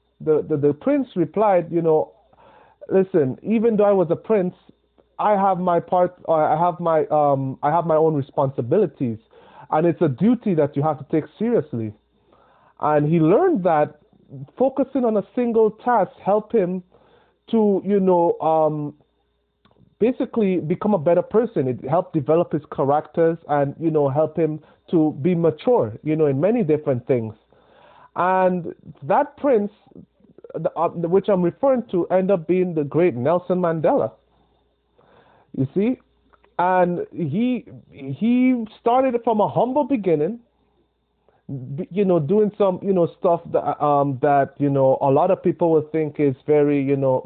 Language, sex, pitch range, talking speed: English, male, 150-205 Hz, 155 wpm